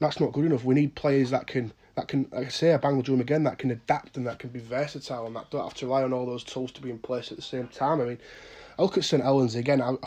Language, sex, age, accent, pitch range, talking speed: English, male, 20-39, British, 130-180 Hz, 315 wpm